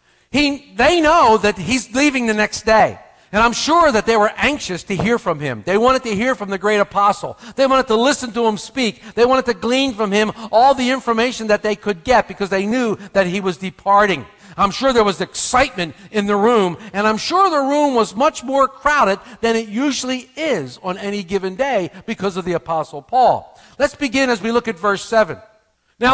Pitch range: 155-240 Hz